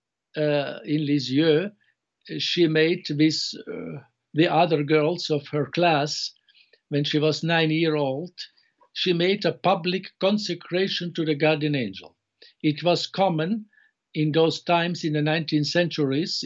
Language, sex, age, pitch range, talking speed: English, male, 60-79, 150-175 Hz, 130 wpm